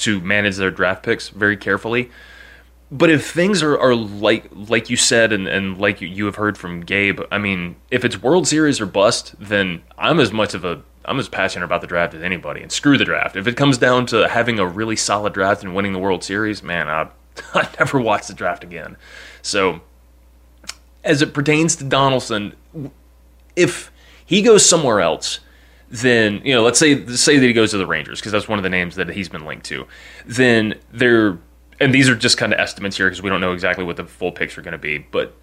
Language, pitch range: English, 95-125 Hz